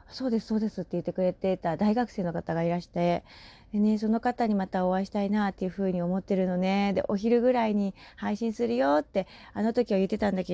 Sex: female